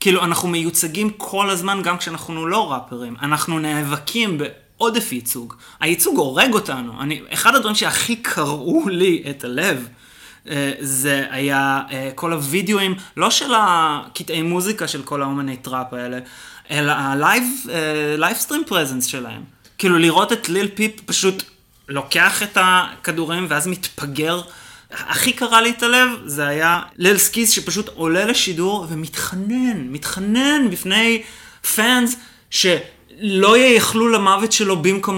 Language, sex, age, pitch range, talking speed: Hebrew, male, 20-39, 145-210 Hz, 125 wpm